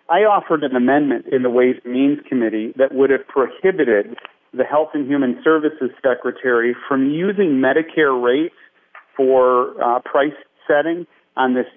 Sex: male